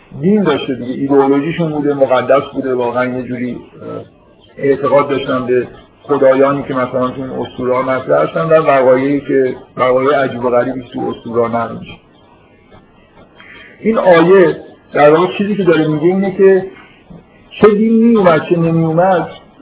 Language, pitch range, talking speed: Persian, 135-170 Hz, 130 wpm